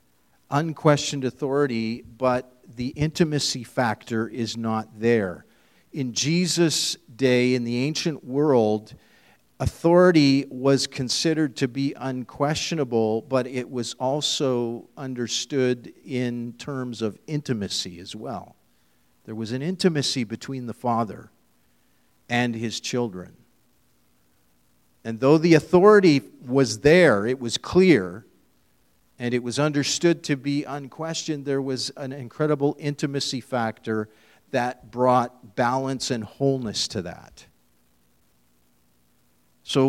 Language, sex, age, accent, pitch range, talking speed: English, male, 50-69, American, 115-145 Hz, 110 wpm